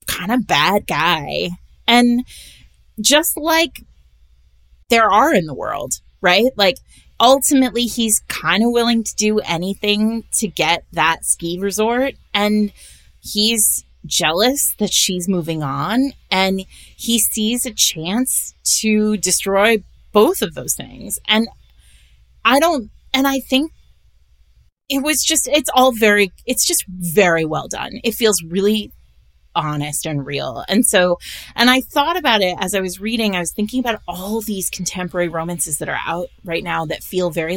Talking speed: 150 wpm